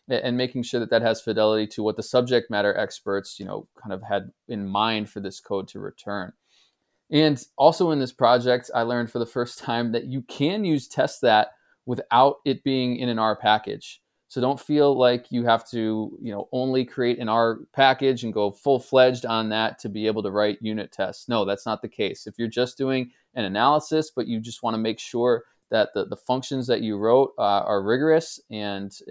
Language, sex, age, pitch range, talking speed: English, male, 20-39, 110-130 Hz, 215 wpm